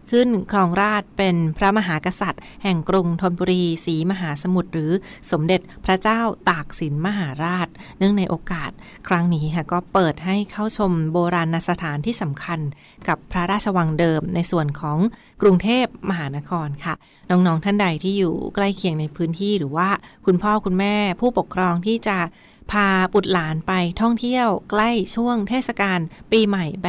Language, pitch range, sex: Thai, 170-205 Hz, female